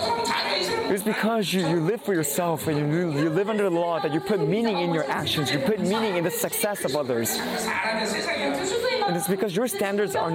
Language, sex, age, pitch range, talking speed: English, male, 20-39, 165-250 Hz, 205 wpm